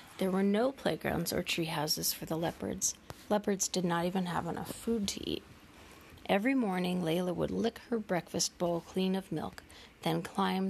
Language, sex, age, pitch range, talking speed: English, female, 40-59, 175-220 Hz, 175 wpm